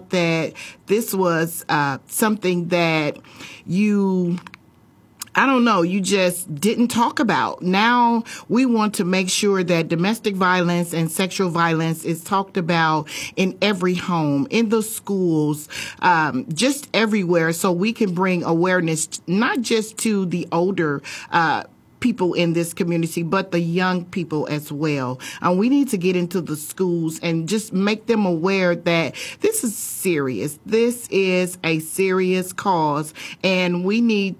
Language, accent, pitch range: English, American, 165-200 Hz